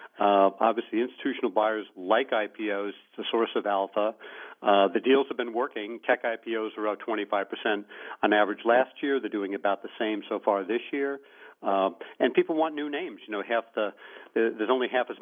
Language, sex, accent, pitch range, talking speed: English, male, American, 100-125 Hz, 185 wpm